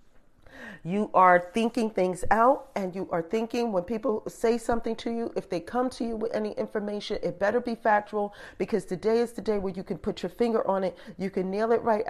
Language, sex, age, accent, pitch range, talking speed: English, female, 40-59, American, 180-220 Hz, 225 wpm